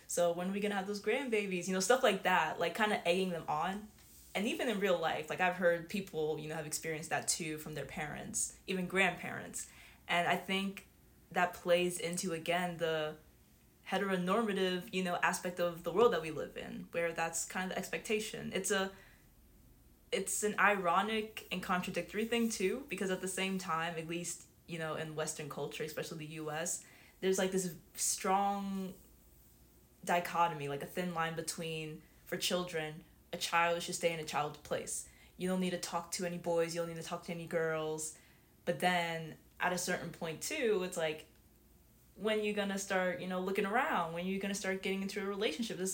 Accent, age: American, 20-39